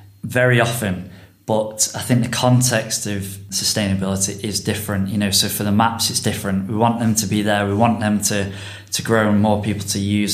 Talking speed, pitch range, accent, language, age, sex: 205 wpm, 100-115 Hz, British, English, 20-39, male